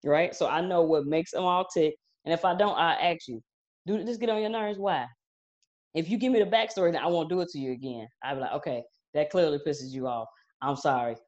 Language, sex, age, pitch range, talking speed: English, female, 20-39, 140-175 Hz, 255 wpm